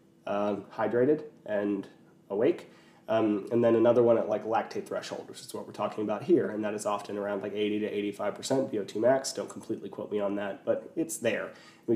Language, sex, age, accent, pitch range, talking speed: English, male, 30-49, American, 110-130 Hz, 210 wpm